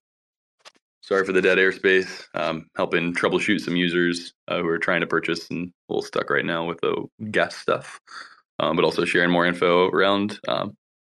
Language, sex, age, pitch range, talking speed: English, male, 20-39, 90-120 Hz, 185 wpm